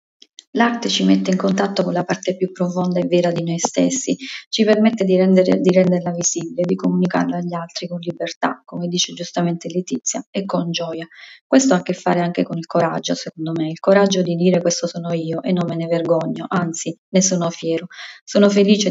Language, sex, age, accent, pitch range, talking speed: Italian, female, 20-39, native, 165-185 Hz, 205 wpm